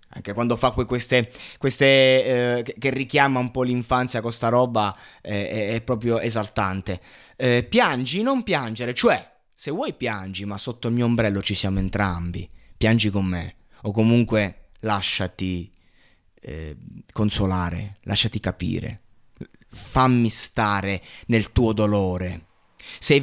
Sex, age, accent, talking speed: male, 20-39, native, 135 wpm